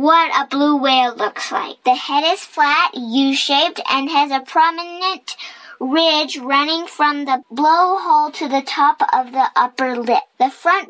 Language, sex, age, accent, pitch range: Chinese, male, 10-29, American, 255-325 Hz